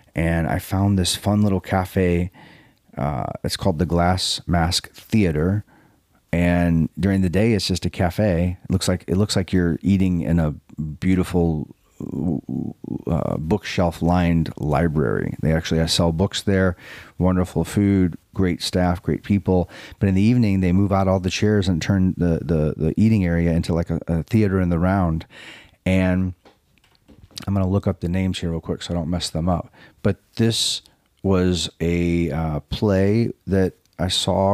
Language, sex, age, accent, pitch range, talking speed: English, male, 40-59, American, 85-100 Hz, 170 wpm